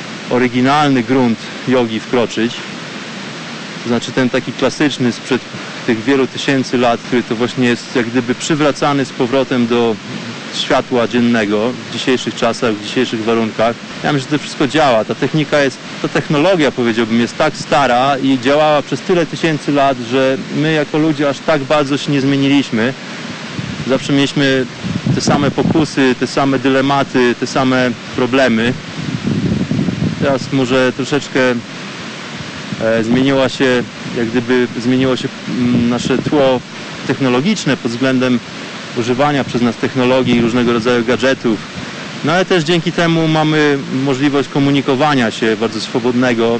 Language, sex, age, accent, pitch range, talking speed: Polish, male, 20-39, native, 120-140 Hz, 140 wpm